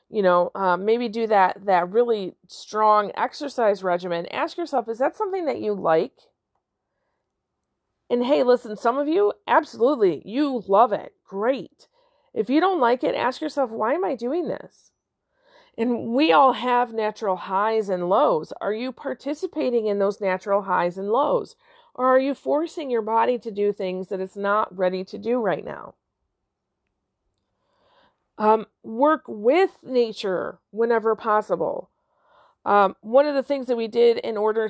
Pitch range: 195-265 Hz